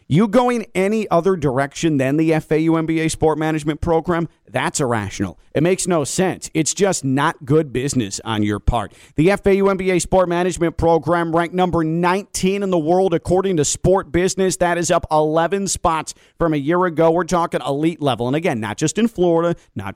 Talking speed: 185 wpm